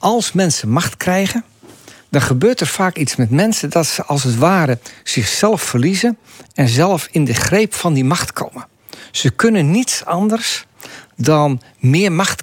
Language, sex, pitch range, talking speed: Dutch, male, 125-165 Hz, 165 wpm